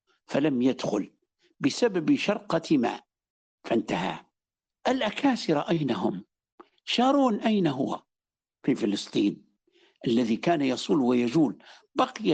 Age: 60-79